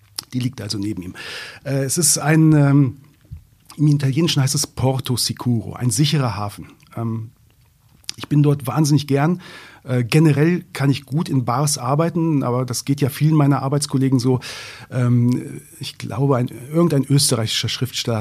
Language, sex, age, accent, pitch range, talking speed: German, male, 40-59, German, 125-150 Hz, 140 wpm